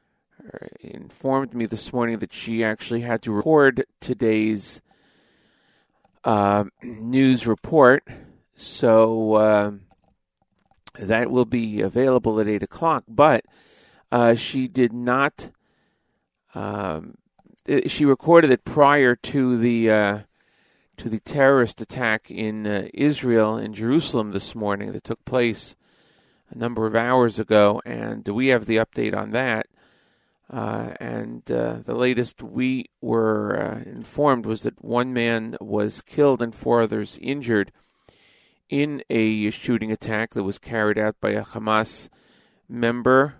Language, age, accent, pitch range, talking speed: English, 40-59, American, 105-125 Hz, 130 wpm